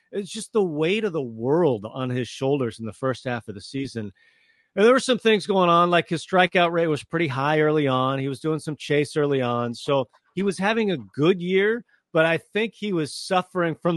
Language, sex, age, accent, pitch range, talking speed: English, male, 40-59, American, 135-175 Hz, 230 wpm